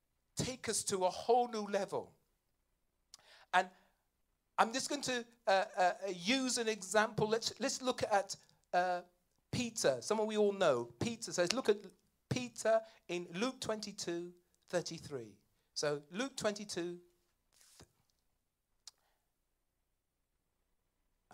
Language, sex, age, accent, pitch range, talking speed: English, male, 40-59, British, 155-205 Hz, 110 wpm